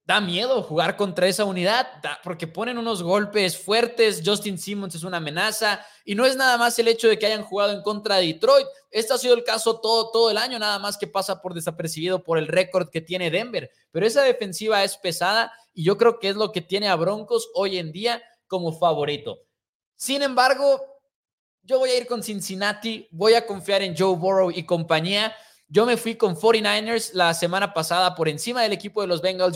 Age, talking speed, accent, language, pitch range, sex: 20-39, 210 wpm, Mexican, Spanish, 185-235 Hz, male